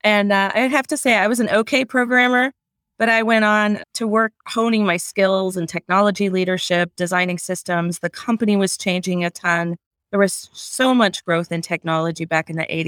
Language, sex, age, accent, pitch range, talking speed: English, female, 30-49, American, 165-200 Hz, 190 wpm